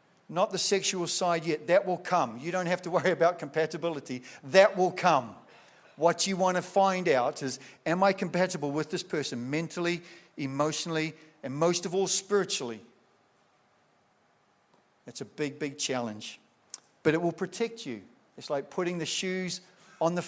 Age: 50-69